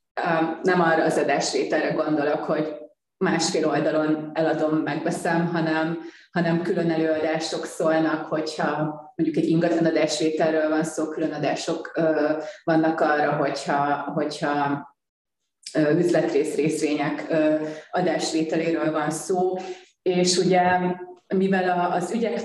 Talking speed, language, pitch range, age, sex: 100 wpm, Hungarian, 155-175 Hz, 30-49, female